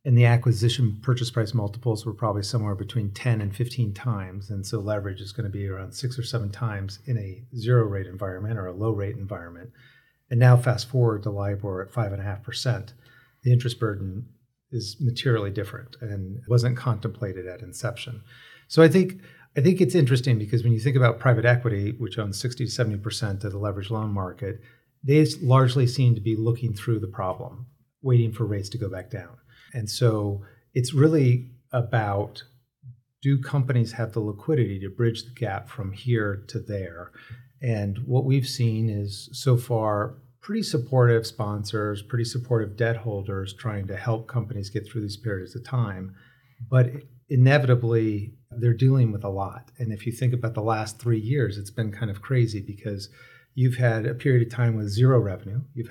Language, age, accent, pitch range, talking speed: English, 40-59, American, 105-125 Hz, 185 wpm